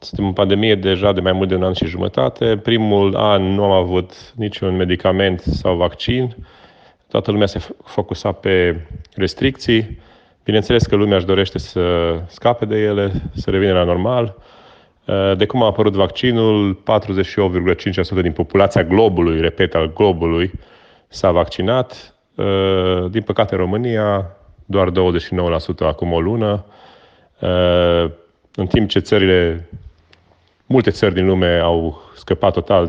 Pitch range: 90-105 Hz